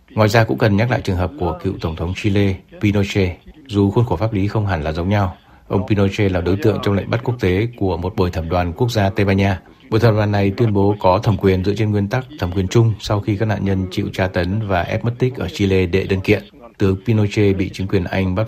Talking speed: 275 wpm